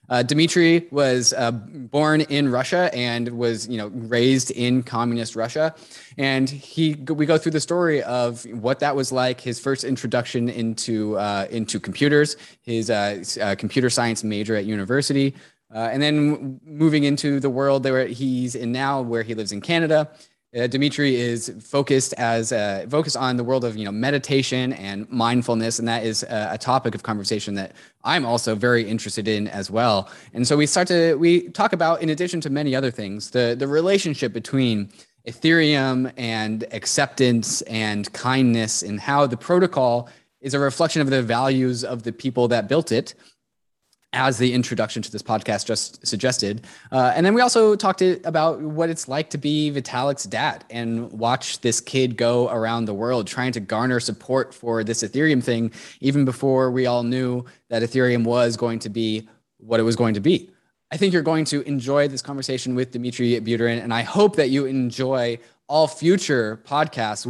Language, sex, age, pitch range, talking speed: English, male, 20-39, 115-145 Hz, 180 wpm